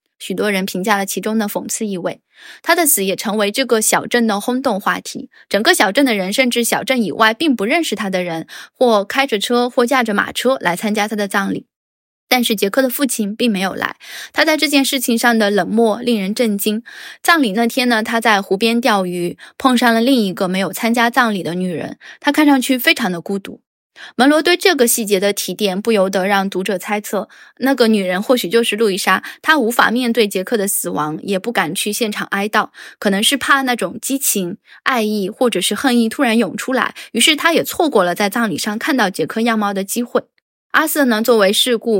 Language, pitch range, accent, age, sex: Chinese, 200-250 Hz, native, 10-29, female